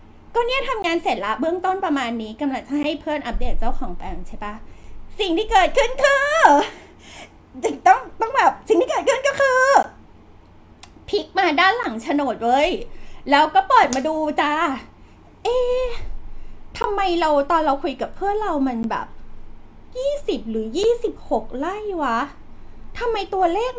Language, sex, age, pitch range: Thai, female, 20-39, 280-390 Hz